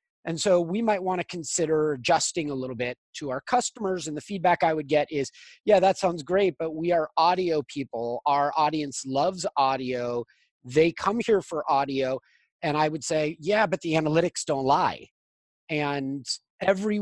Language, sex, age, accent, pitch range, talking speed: English, male, 30-49, American, 135-185 Hz, 180 wpm